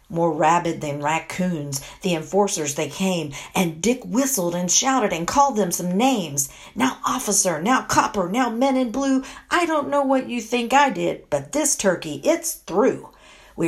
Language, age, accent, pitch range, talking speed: English, 50-69, American, 155-240 Hz, 175 wpm